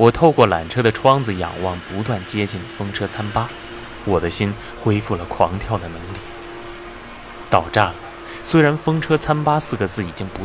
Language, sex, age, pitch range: Chinese, male, 20-39, 90-115 Hz